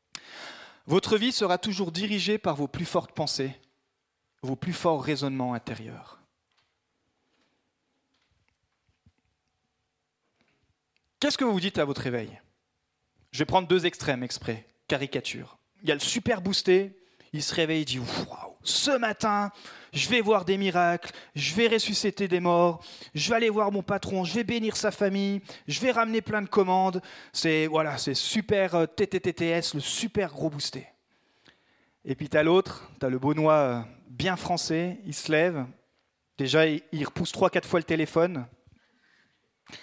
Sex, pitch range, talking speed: male, 140-200 Hz, 155 wpm